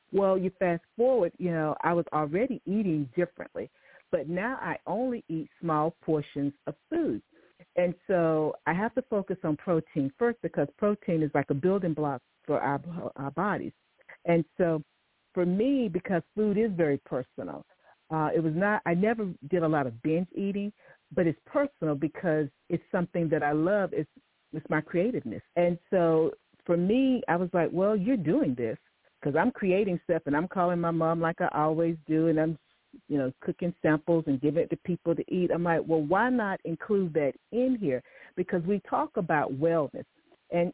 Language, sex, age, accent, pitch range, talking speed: English, female, 50-69, American, 155-195 Hz, 185 wpm